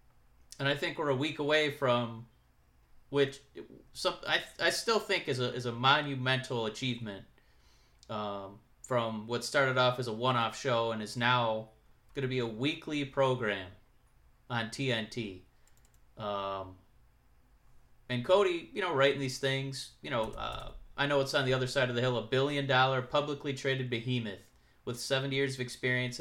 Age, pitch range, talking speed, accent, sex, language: 30-49, 115-135 Hz, 165 wpm, American, male, English